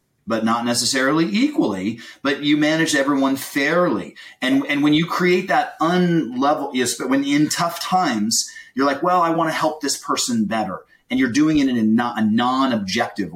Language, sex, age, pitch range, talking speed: English, male, 30-49, 110-170 Hz, 185 wpm